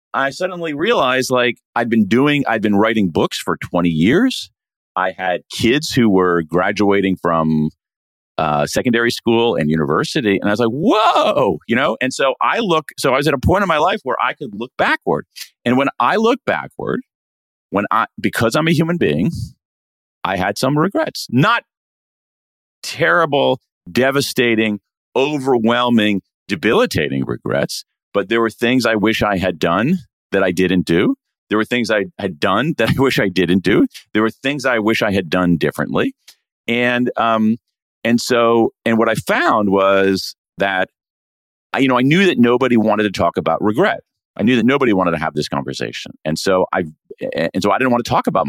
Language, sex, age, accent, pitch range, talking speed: French, male, 40-59, American, 85-120 Hz, 185 wpm